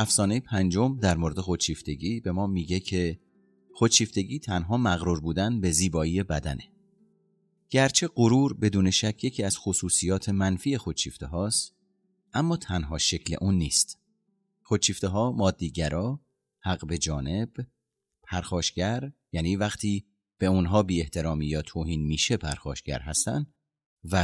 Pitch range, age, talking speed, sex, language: 80-120 Hz, 30-49, 115 wpm, male, Persian